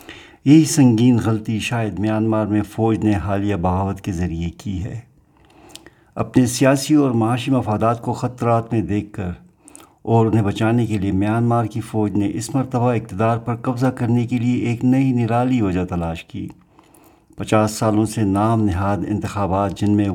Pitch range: 105-125 Hz